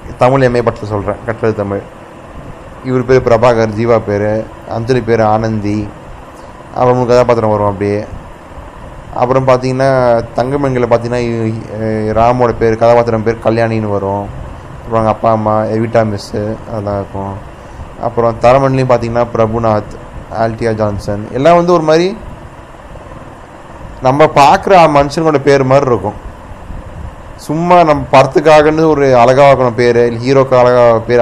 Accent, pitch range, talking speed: native, 110-130 Hz, 115 wpm